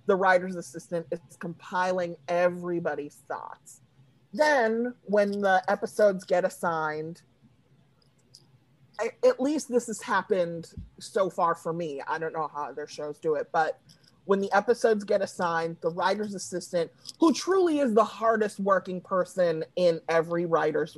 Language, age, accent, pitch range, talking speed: English, 30-49, American, 165-210 Hz, 140 wpm